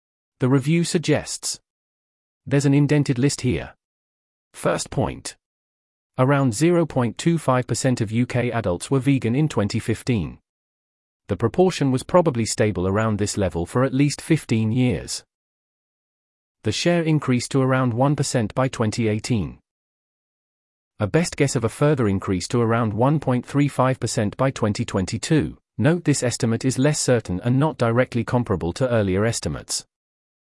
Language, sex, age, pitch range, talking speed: English, male, 30-49, 105-140 Hz, 130 wpm